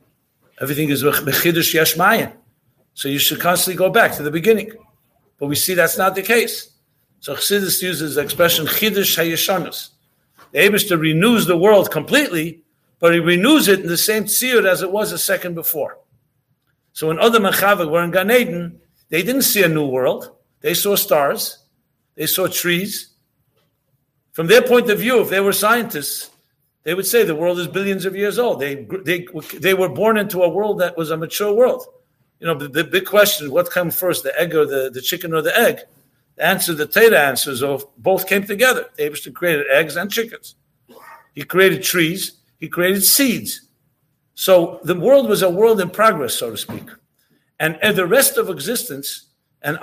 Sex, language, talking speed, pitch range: male, English, 180 wpm, 155-205 Hz